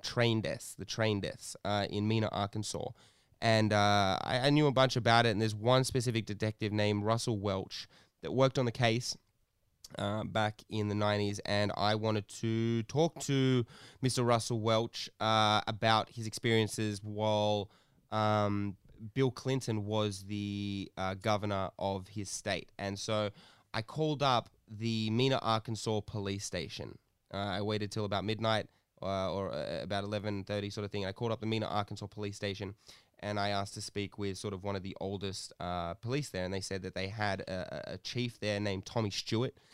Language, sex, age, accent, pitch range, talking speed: English, male, 20-39, Australian, 100-115 Hz, 185 wpm